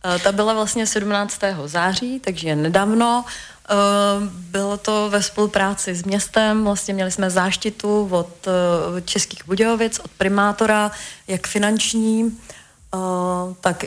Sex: female